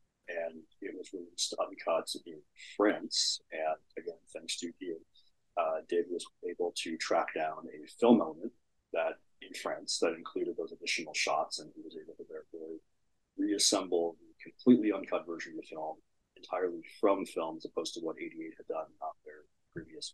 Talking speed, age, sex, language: 180 wpm, 30-49, male, English